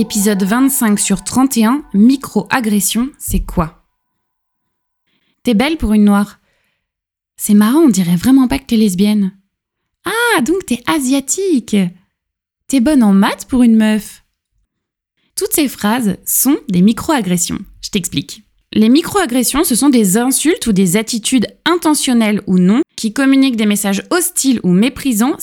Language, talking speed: French, 140 wpm